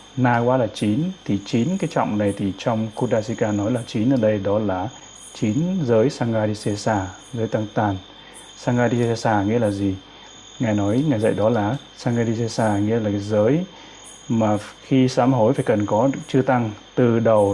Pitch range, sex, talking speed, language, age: 105-130 Hz, male, 170 wpm, Vietnamese, 20-39